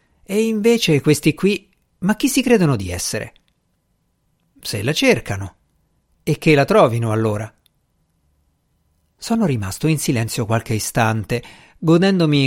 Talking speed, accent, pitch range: 120 wpm, native, 120-170 Hz